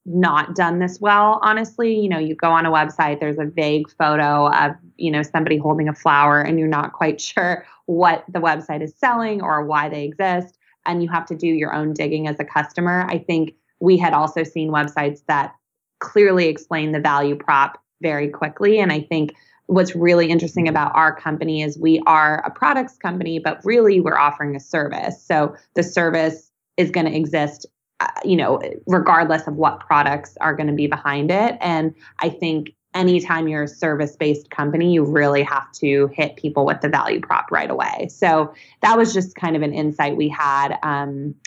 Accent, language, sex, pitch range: American, English, female, 145-170 Hz